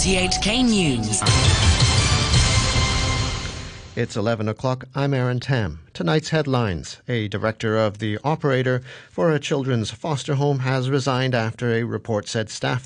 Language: English